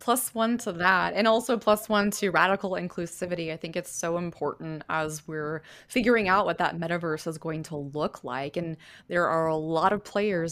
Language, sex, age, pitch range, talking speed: English, female, 20-39, 155-200 Hz, 200 wpm